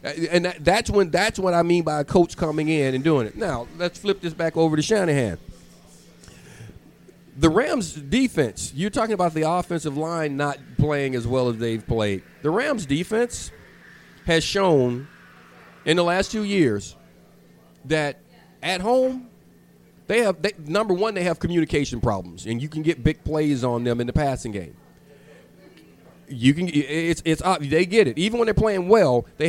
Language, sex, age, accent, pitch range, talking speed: English, male, 40-59, American, 135-190 Hz, 175 wpm